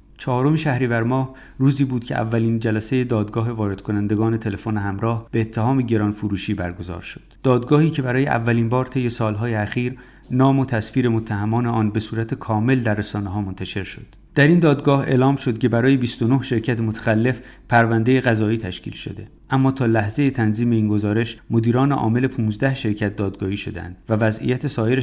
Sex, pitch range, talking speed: male, 110-130 Hz, 170 wpm